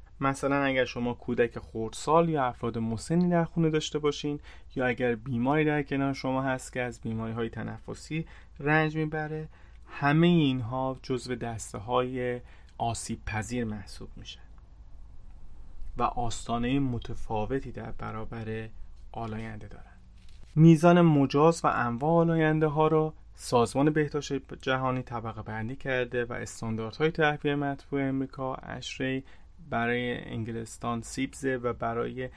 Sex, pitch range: male, 115-140 Hz